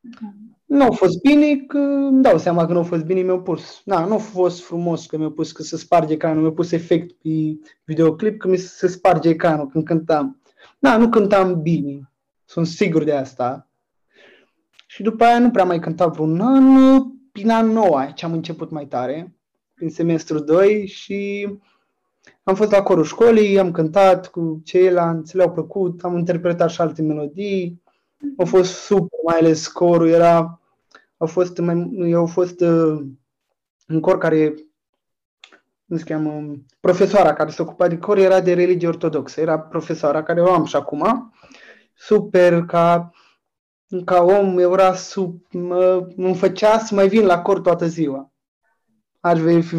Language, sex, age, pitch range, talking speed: Romanian, male, 20-39, 165-195 Hz, 170 wpm